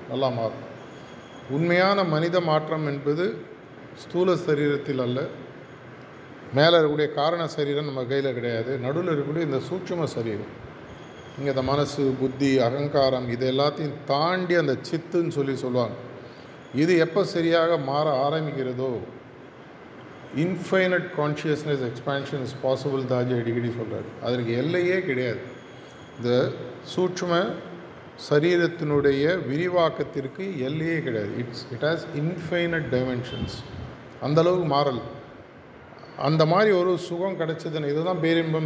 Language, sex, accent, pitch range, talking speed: Tamil, male, native, 130-165 Hz, 110 wpm